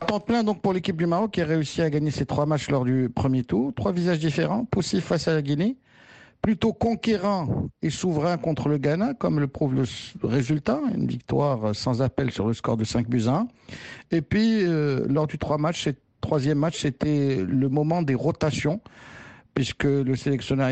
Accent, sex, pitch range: French, male, 135-175 Hz